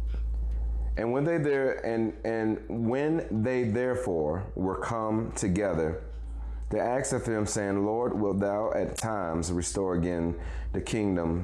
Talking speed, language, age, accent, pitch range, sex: 135 wpm, English, 30-49, American, 75-105 Hz, male